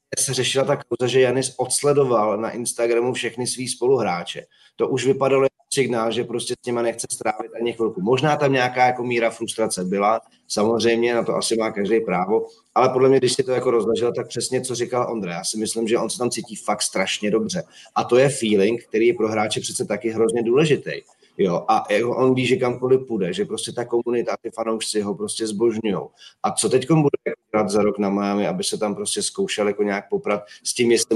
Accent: native